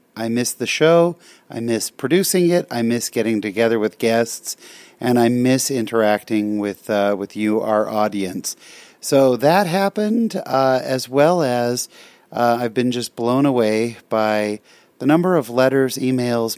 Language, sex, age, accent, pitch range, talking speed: English, male, 40-59, American, 110-135 Hz, 155 wpm